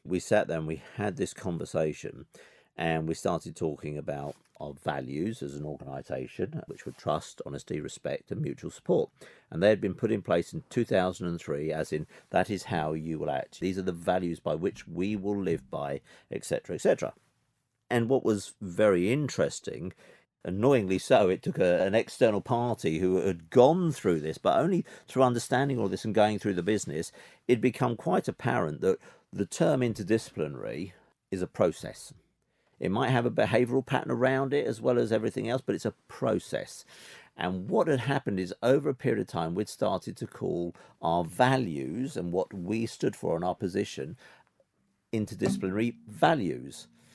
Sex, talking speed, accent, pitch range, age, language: male, 175 wpm, British, 90-125 Hz, 50-69, English